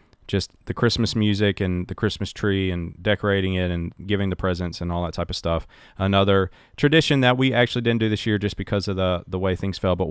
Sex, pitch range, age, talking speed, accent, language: male, 90-105 Hz, 30-49, 230 wpm, American, English